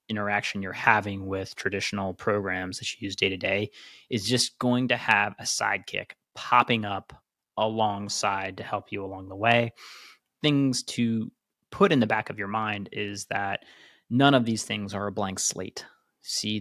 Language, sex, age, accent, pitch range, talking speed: English, male, 20-39, American, 100-120 Hz, 165 wpm